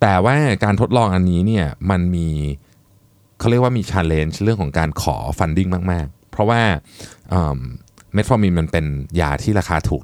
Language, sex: Thai, male